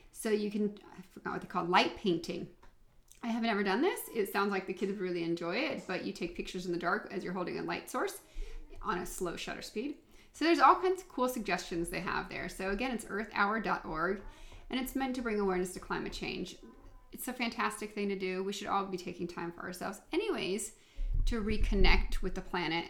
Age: 30-49